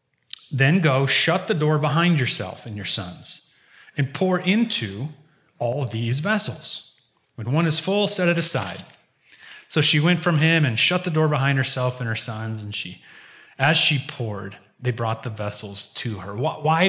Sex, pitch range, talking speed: male, 120-165 Hz, 175 wpm